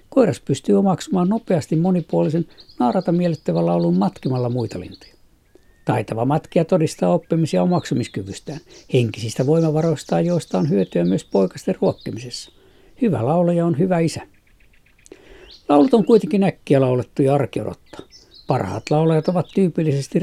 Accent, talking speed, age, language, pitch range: native, 115 wpm, 60-79, Finnish, 125-170 Hz